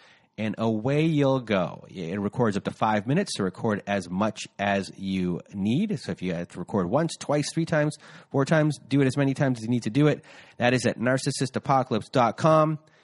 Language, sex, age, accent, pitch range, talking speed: English, male, 30-49, American, 110-155 Hz, 205 wpm